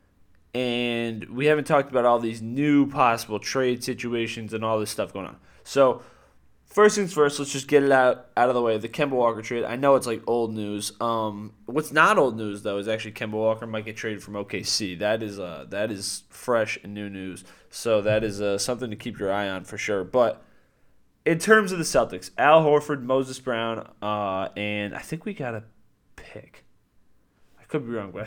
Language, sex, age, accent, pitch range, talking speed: English, male, 20-39, American, 105-130 Hz, 210 wpm